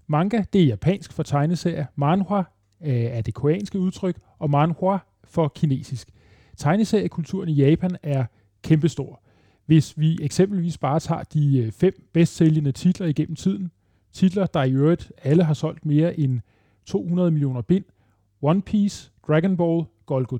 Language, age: Danish, 30-49